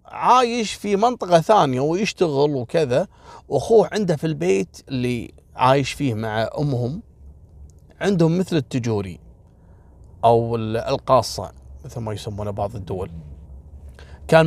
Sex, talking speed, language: male, 110 wpm, Arabic